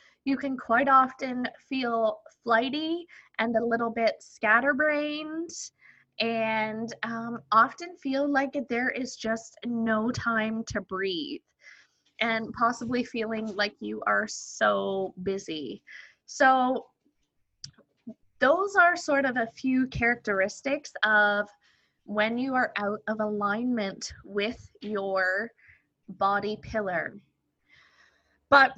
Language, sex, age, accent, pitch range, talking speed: English, female, 20-39, American, 210-270 Hz, 105 wpm